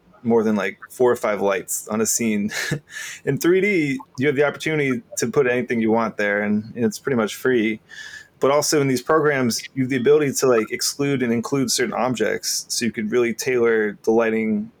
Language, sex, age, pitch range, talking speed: English, male, 20-39, 110-140 Hz, 205 wpm